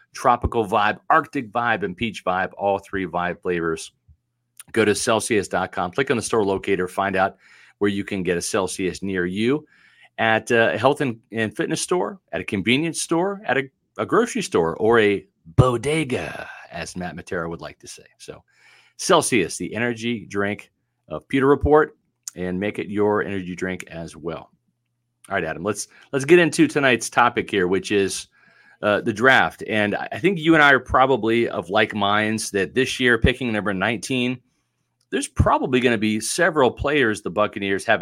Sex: male